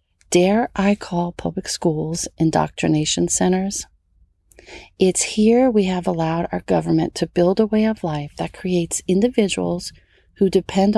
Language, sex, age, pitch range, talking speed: English, female, 40-59, 150-210 Hz, 135 wpm